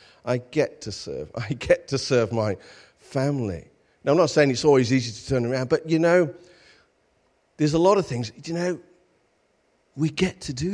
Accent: British